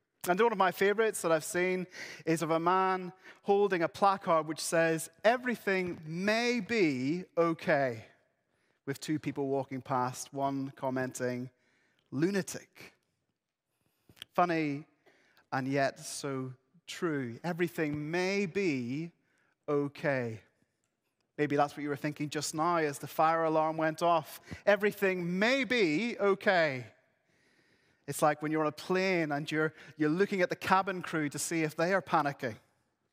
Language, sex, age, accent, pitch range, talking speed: English, male, 30-49, British, 140-180 Hz, 140 wpm